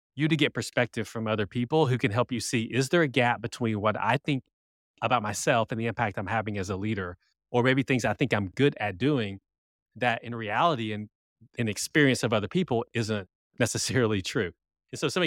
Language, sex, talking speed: English, male, 210 wpm